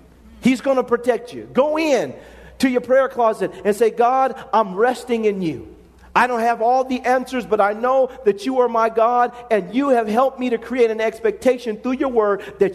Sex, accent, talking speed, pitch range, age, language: male, American, 210 wpm, 150-235 Hz, 40-59, English